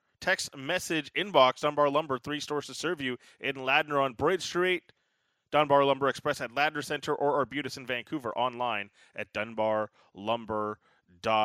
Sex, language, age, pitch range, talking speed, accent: male, English, 20-39, 125-155 Hz, 145 wpm, American